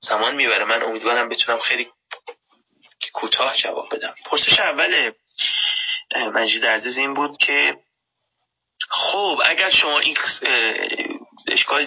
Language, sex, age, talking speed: Persian, male, 30-49, 105 wpm